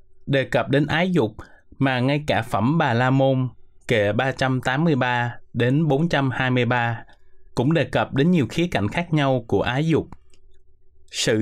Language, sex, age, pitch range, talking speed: Vietnamese, male, 20-39, 100-145 Hz, 150 wpm